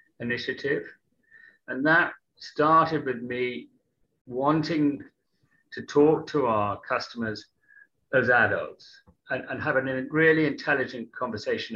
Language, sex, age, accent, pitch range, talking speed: English, male, 40-59, British, 110-155 Hz, 105 wpm